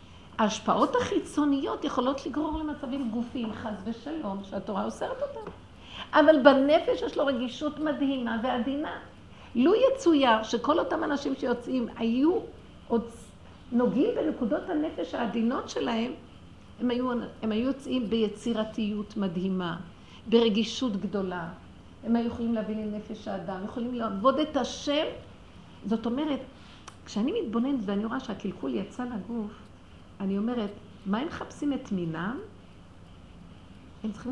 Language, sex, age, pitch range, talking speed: Hebrew, female, 50-69, 210-285 Hz, 120 wpm